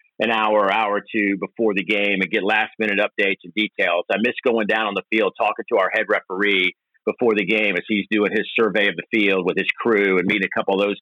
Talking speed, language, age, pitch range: 250 wpm, English, 50-69, 100-120 Hz